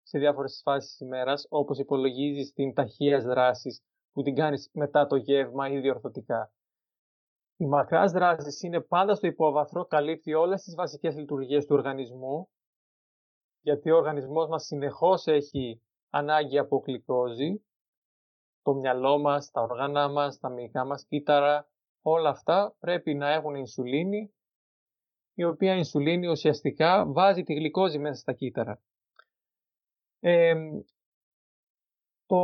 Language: Greek